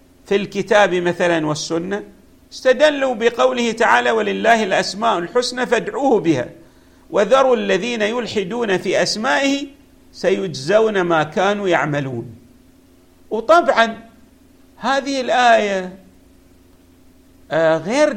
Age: 50-69